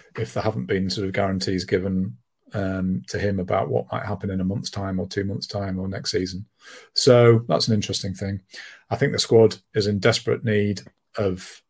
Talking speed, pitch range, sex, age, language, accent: 205 wpm, 100-120 Hz, male, 40-59, English, British